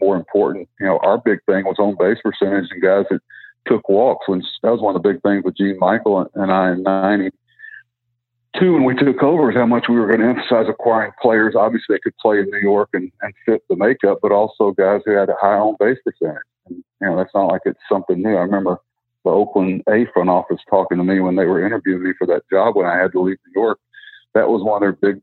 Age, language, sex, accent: 50-69, English, male, American